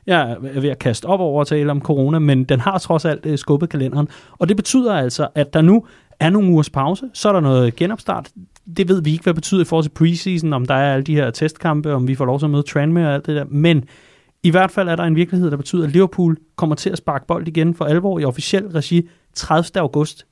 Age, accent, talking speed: 30-49, native, 265 wpm